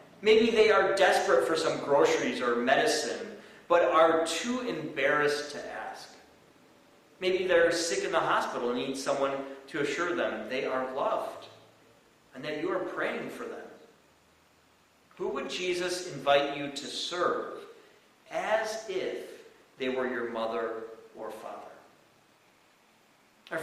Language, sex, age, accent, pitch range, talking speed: English, male, 40-59, American, 135-190 Hz, 135 wpm